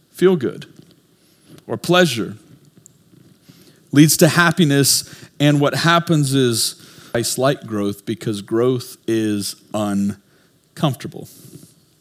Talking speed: 90 wpm